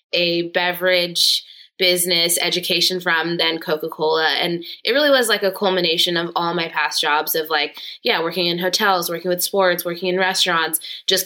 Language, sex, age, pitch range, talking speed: English, female, 20-39, 175-200 Hz, 170 wpm